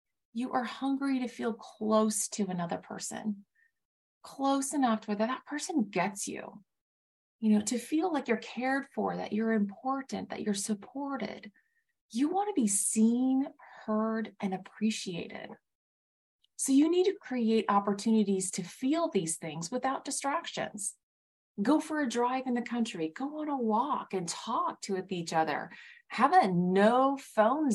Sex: female